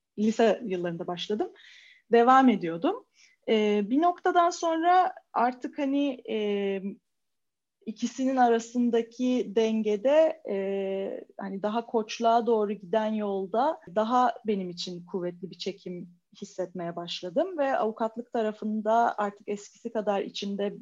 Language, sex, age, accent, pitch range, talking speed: Turkish, female, 30-49, native, 195-235 Hz, 100 wpm